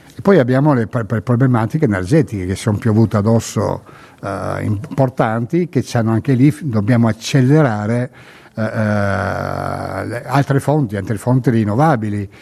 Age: 60-79